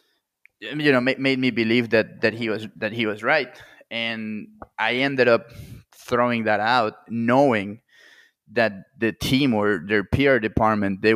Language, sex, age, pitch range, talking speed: English, male, 20-39, 105-120 Hz, 160 wpm